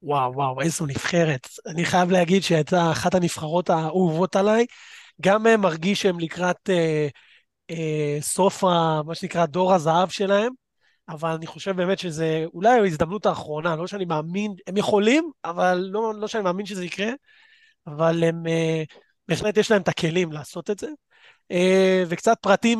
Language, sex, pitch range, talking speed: Hebrew, male, 160-200 Hz, 155 wpm